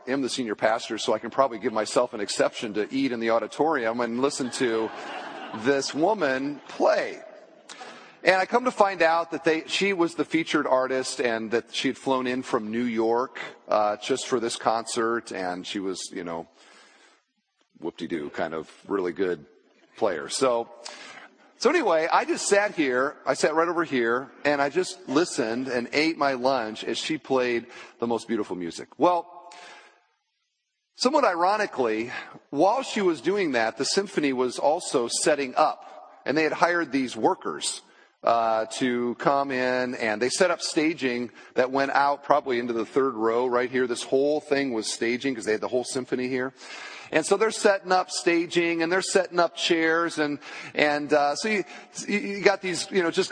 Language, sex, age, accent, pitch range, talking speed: English, male, 40-59, American, 125-175 Hz, 185 wpm